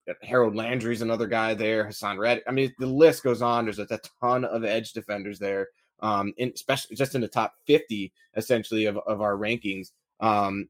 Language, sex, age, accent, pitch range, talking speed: English, male, 20-39, American, 105-120 Hz, 190 wpm